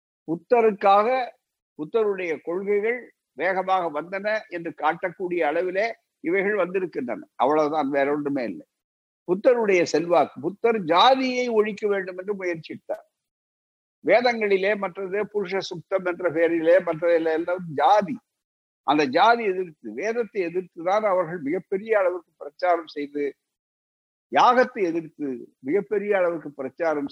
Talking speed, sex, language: 105 wpm, male, Tamil